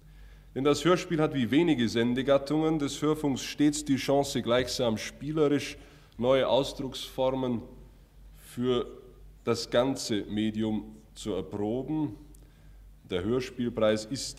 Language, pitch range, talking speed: German, 110-140 Hz, 105 wpm